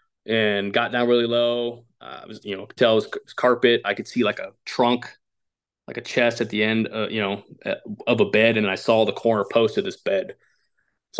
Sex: male